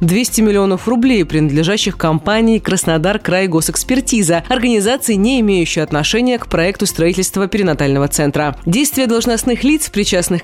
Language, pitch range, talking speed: Russian, 160-220 Hz, 115 wpm